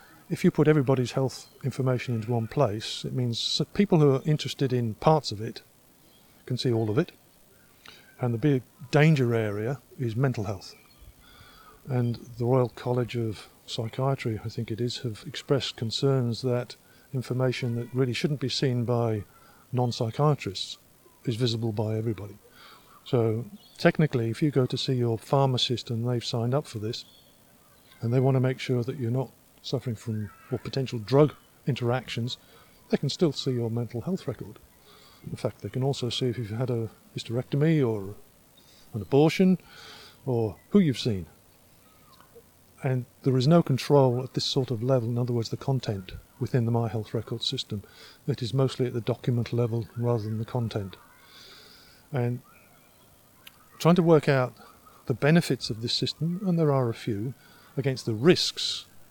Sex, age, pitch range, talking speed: male, 50-69, 115-135 Hz, 165 wpm